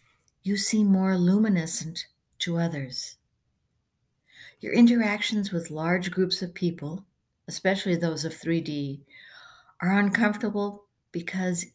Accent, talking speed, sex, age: American, 100 wpm, female, 60-79